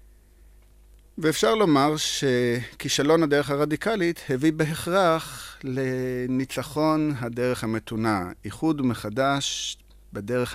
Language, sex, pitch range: Hebrew, male, 110-140 Hz